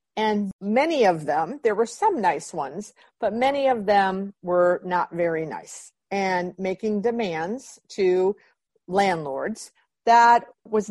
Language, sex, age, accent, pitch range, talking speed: English, female, 50-69, American, 175-225 Hz, 130 wpm